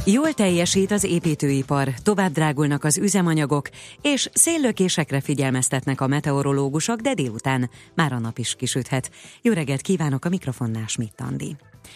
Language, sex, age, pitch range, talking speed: Hungarian, female, 30-49, 125-165 Hz, 130 wpm